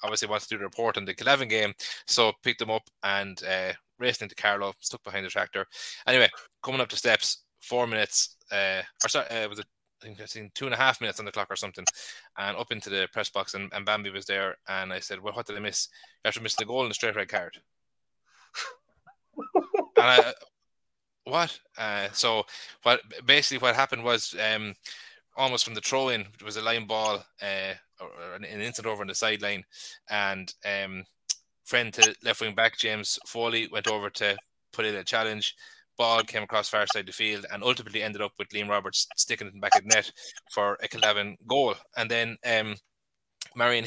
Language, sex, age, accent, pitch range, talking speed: English, male, 20-39, Irish, 100-120 Hz, 210 wpm